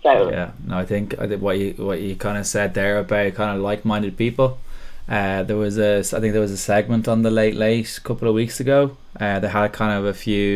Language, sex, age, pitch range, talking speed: English, male, 10-29, 100-110 Hz, 250 wpm